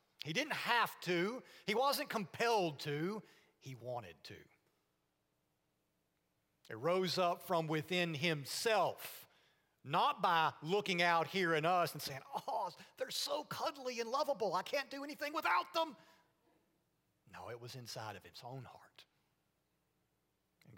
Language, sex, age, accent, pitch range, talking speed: English, male, 40-59, American, 130-180 Hz, 135 wpm